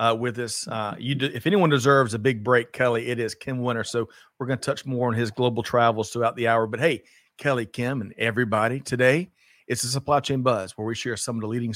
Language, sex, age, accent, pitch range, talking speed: English, male, 40-59, American, 110-135 Hz, 250 wpm